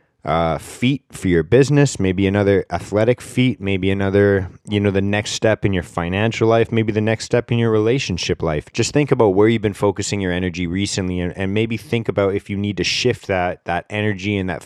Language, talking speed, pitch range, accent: English, 215 wpm, 90-110 Hz, American